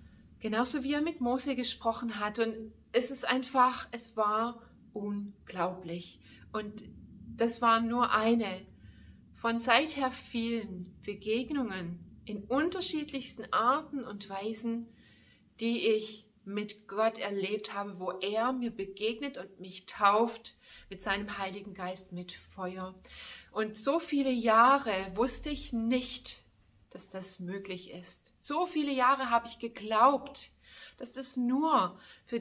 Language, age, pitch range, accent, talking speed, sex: German, 30-49, 205-255 Hz, German, 125 wpm, female